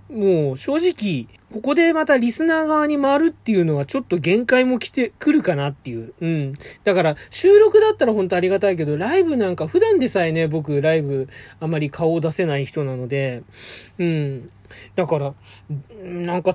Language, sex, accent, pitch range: Japanese, male, native, 145-220 Hz